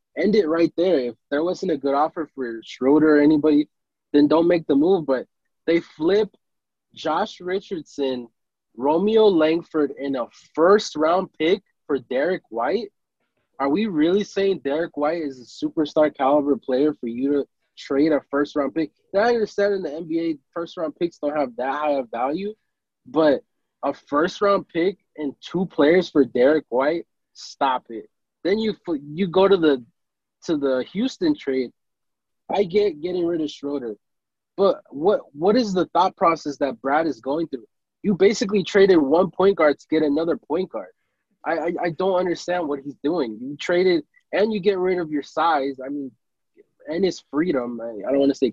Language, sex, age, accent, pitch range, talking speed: English, male, 20-39, American, 145-200 Hz, 175 wpm